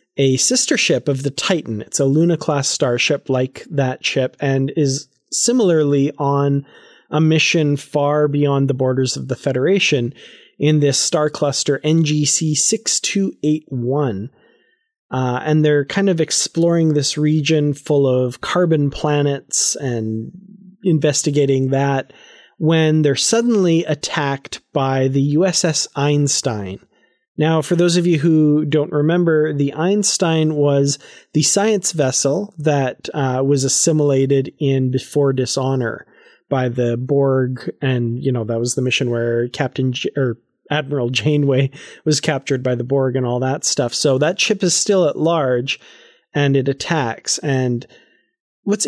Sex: male